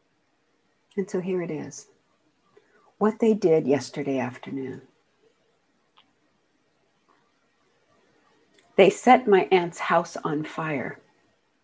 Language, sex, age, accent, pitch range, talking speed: English, female, 60-79, American, 145-185 Hz, 90 wpm